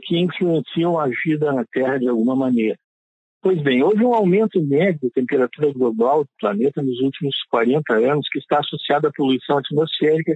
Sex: male